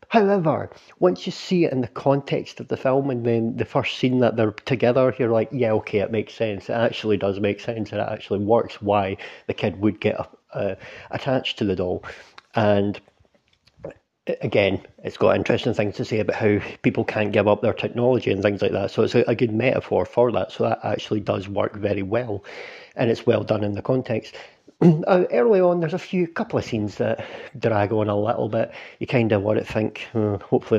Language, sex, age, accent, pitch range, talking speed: English, male, 40-59, British, 105-120 Hz, 205 wpm